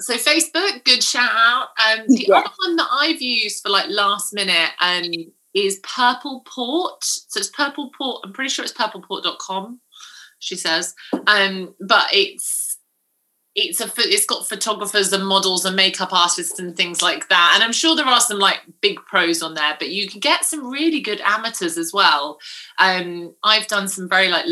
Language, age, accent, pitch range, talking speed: English, 30-49, British, 175-240 Hz, 185 wpm